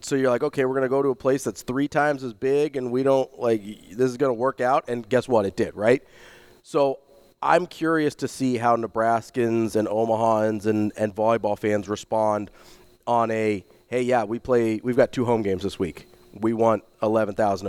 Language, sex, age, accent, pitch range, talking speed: English, male, 30-49, American, 110-130 Hz, 205 wpm